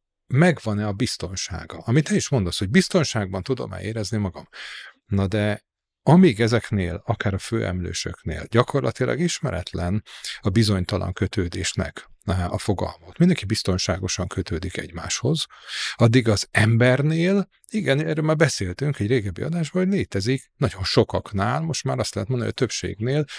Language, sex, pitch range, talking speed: Hungarian, male, 100-140 Hz, 135 wpm